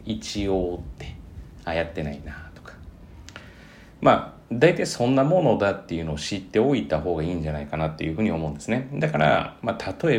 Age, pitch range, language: 40-59, 80-105 Hz, Japanese